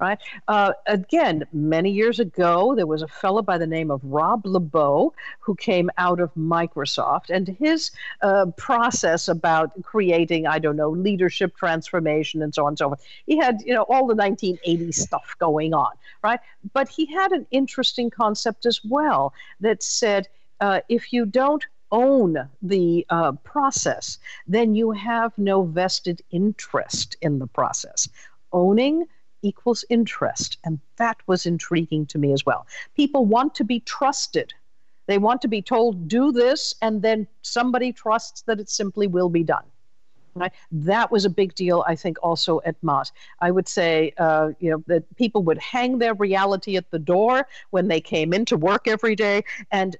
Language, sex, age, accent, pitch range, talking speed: English, female, 50-69, American, 165-225 Hz, 170 wpm